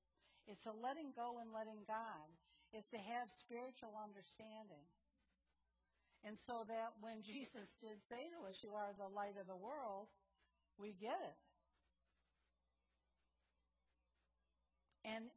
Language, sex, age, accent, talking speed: English, female, 60-79, American, 125 wpm